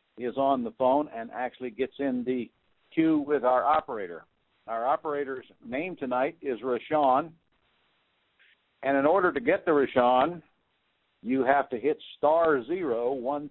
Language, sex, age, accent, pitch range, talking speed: English, male, 60-79, American, 115-145 Hz, 145 wpm